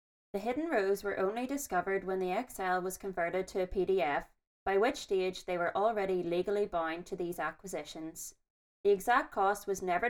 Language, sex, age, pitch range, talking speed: English, female, 20-39, 180-210 Hz, 180 wpm